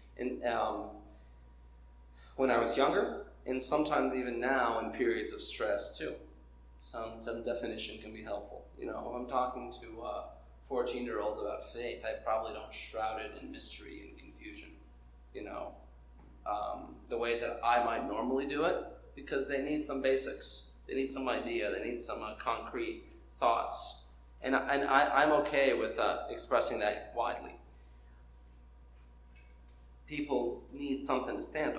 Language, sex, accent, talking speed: English, male, American, 155 wpm